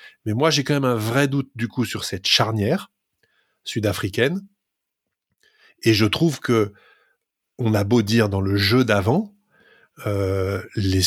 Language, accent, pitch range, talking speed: French, French, 105-140 Hz, 150 wpm